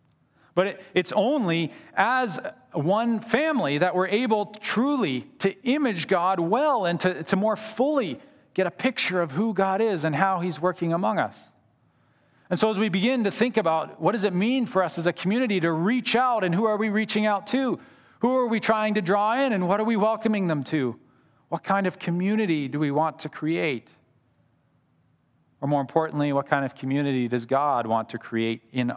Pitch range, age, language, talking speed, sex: 135-195 Hz, 40-59, English, 195 wpm, male